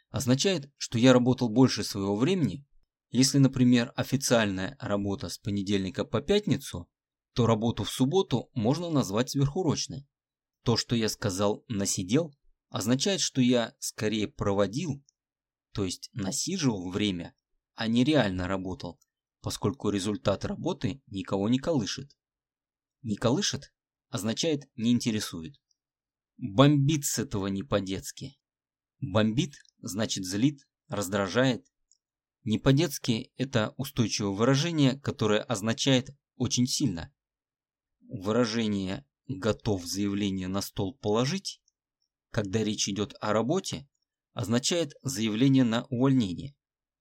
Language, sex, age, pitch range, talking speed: Russian, male, 20-39, 105-140 Hz, 105 wpm